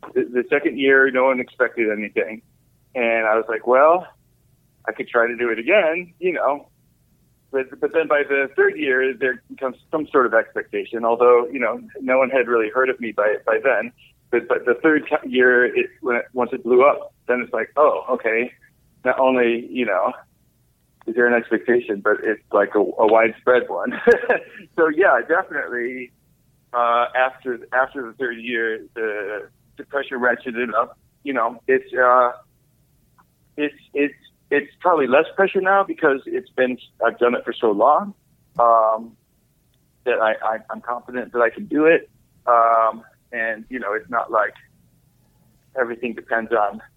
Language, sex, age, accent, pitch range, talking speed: English, male, 30-49, American, 115-160 Hz, 170 wpm